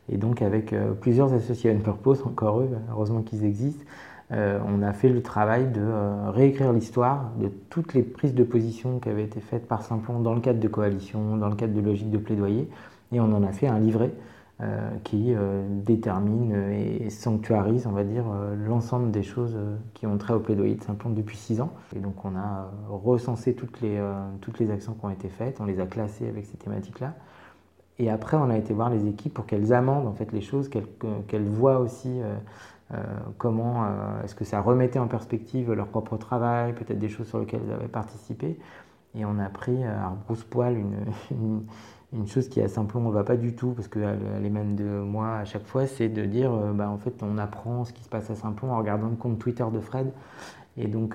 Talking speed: 215 wpm